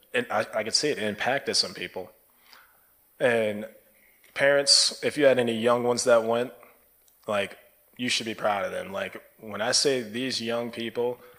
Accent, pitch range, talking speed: American, 105-115 Hz, 175 wpm